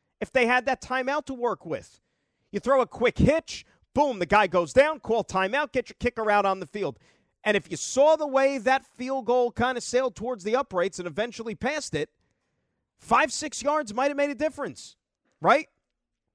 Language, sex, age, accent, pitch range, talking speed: English, male, 40-59, American, 190-265 Hz, 200 wpm